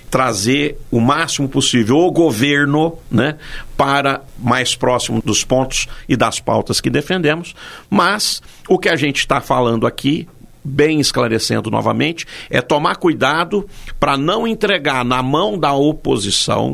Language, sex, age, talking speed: Portuguese, male, 50-69, 135 wpm